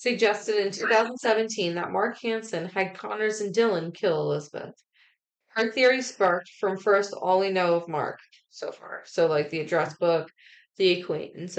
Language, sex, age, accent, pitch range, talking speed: English, female, 20-39, American, 175-220 Hz, 160 wpm